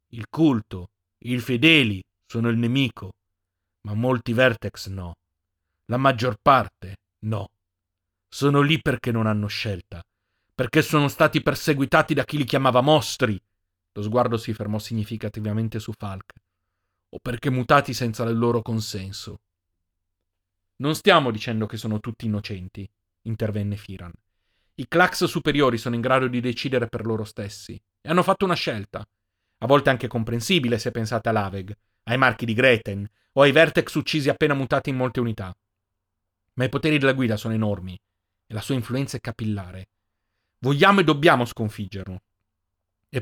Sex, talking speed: male, 150 wpm